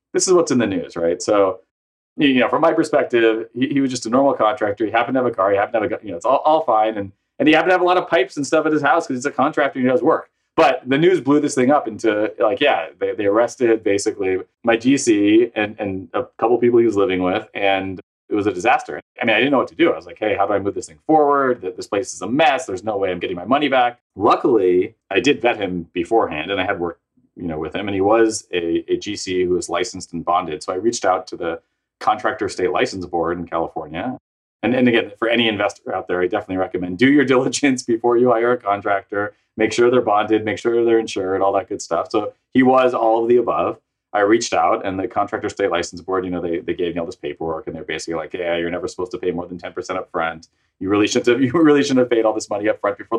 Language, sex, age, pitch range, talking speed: English, male, 30-49, 95-140 Hz, 280 wpm